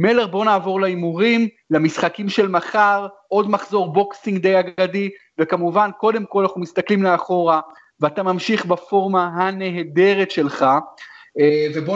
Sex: male